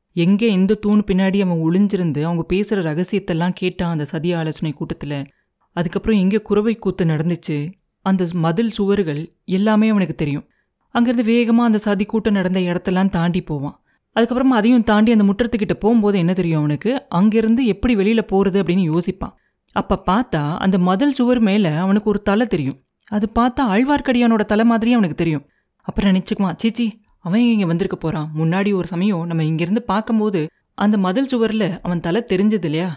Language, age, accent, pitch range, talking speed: Tamil, 30-49, native, 170-215 Hz, 155 wpm